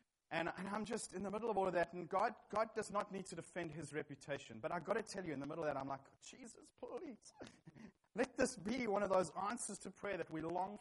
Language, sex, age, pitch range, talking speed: English, male, 30-49, 150-200 Hz, 265 wpm